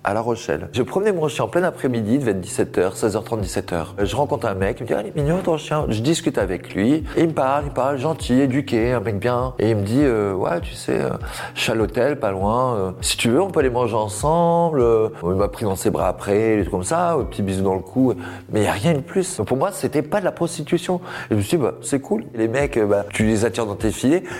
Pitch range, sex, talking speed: 105-140 Hz, male, 285 wpm